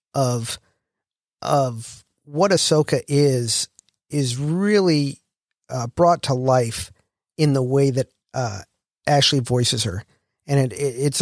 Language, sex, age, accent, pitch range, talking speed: English, male, 50-69, American, 120-145 Hz, 125 wpm